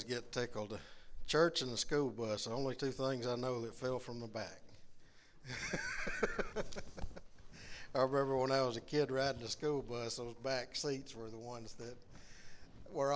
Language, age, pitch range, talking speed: English, 60-79, 120-150 Hz, 170 wpm